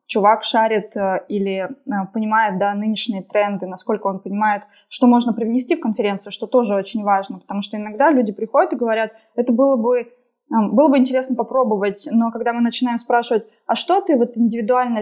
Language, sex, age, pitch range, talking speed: Russian, female, 20-39, 210-250 Hz, 170 wpm